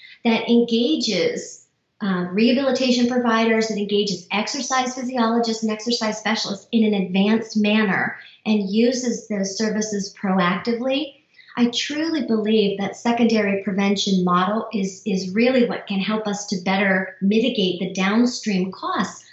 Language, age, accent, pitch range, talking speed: English, 40-59, American, 195-235 Hz, 125 wpm